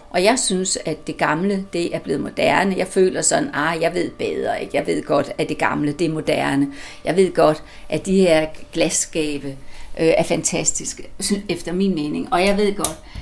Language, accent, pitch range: Danish, native, 155-205 Hz